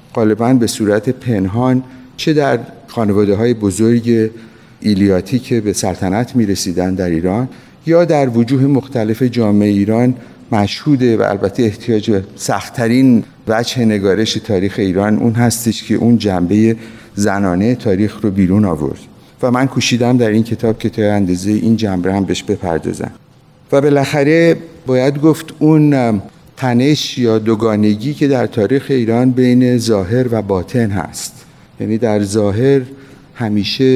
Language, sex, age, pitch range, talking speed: Persian, male, 50-69, 100-125 Hz, 140 wpm